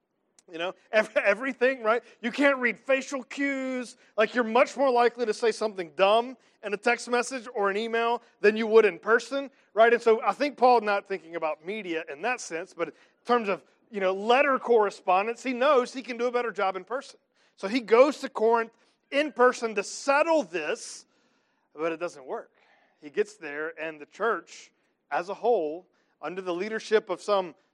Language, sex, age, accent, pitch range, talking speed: English, male, 40-59, American, 185-250 Hz, 195 wpm